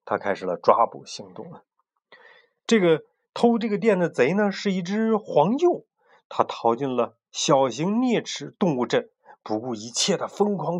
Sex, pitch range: male, 130-220 Hz